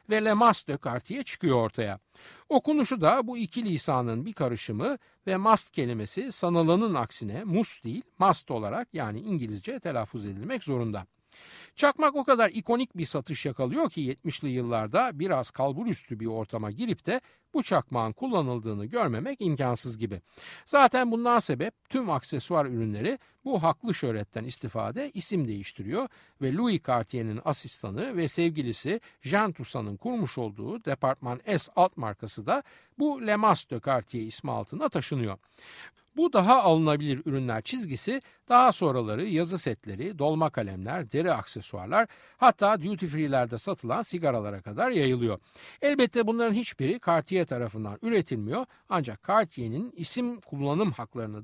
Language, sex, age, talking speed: Turkish, male, 60-79, 135 wpm